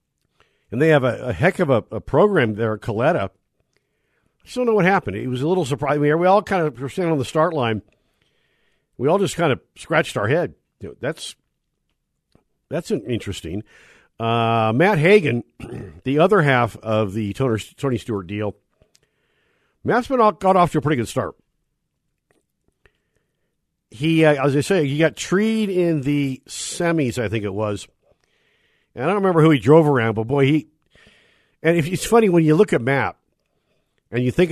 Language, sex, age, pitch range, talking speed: English, male, 50-69, 115-165 Hz, 185 wpm